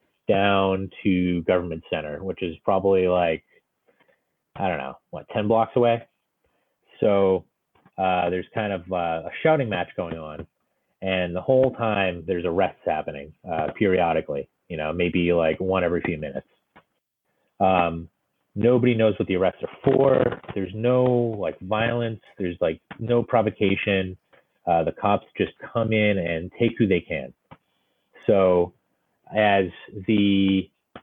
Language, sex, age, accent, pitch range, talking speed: English, male, 30-49, American, 90-110 Hz, 140 wpm